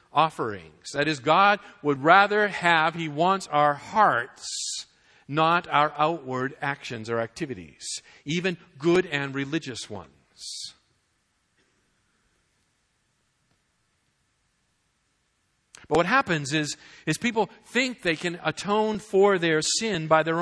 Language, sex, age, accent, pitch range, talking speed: English, male, 50-69, American, 145-190 Hz, 110 wpm